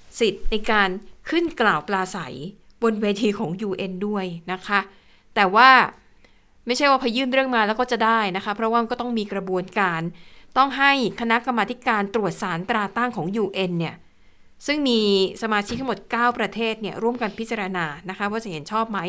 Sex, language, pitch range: female, Thai, 200-245 Hz